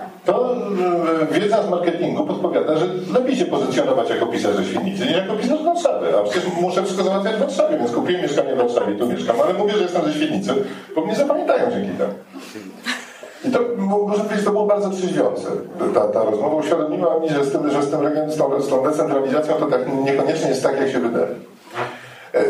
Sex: male